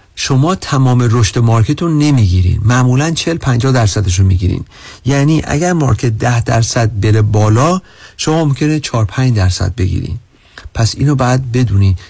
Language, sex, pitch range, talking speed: Persian, male, 105-150 Hz, 130 wpm